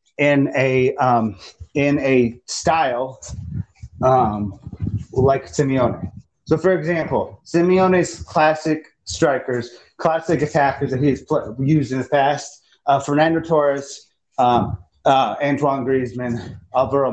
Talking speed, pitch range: 110 wpm, 125-155 Hz